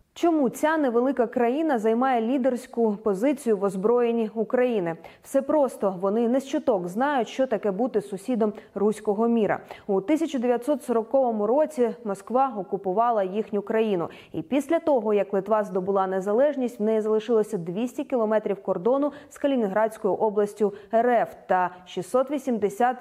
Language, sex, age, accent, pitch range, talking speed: Ukrainian, female, 20-39, native, 200-260 Hz, 125 wpm